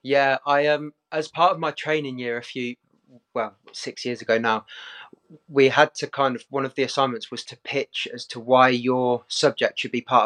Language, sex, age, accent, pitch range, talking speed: English, male, 20-39, British, 120-140 Hz, 215 wpm